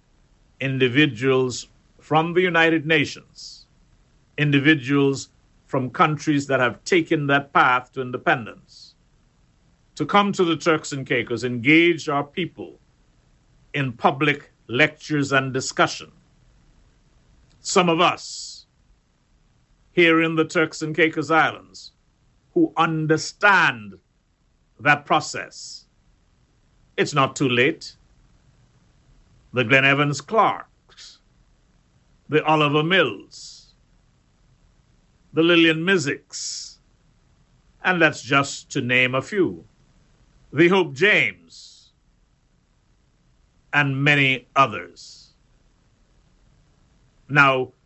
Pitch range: 125-155 Hz